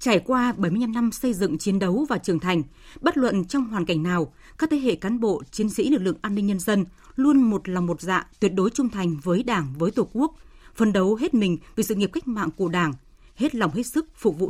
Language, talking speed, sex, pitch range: Vietnamese, 255 wpm, female, 185-245 Hz